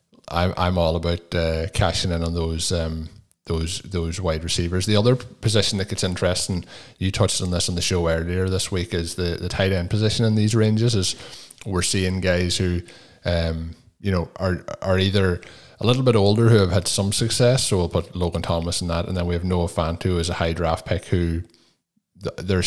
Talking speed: 205 wpm